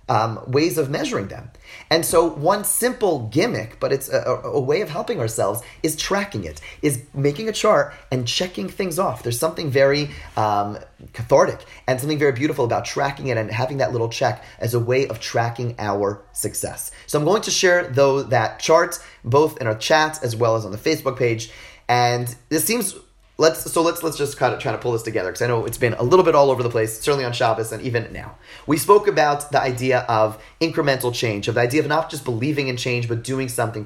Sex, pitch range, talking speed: male, 120-150 Hz, 220 wpm